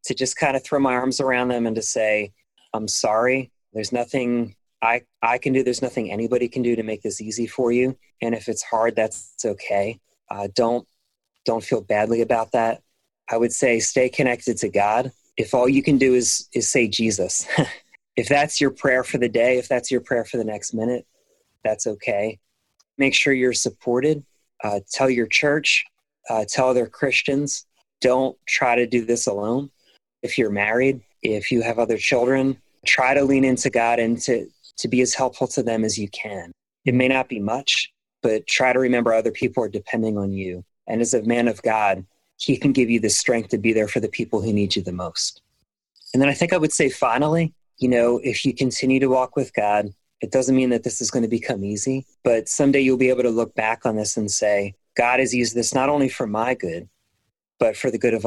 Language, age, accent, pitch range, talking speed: English, 30-49, American, 110-130 Hz, 215 wpm